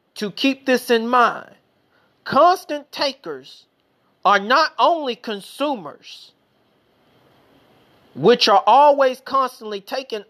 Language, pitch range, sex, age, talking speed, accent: English, 210-270 Hz, male, 40-59, 95 wpm, American